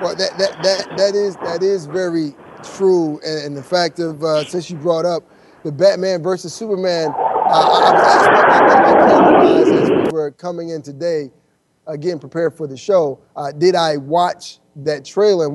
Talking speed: 190 wpm